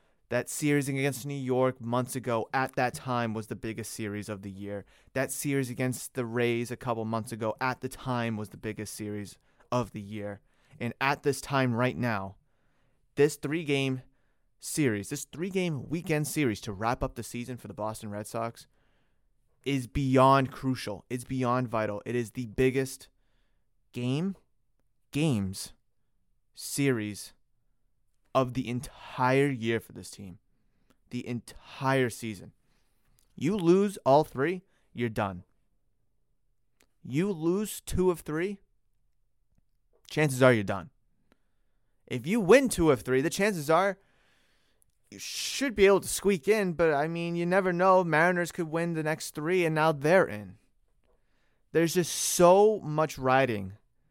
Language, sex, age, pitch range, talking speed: English, male, 30-49, 115-155 Hz, 150 wpm